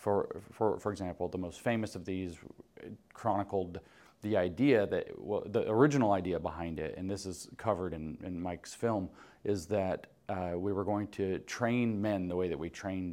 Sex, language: male, English